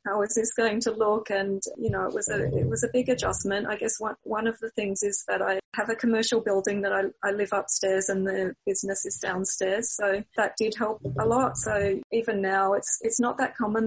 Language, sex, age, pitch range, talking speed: English, female, 30-49, 195-220 Hz, 240 wpm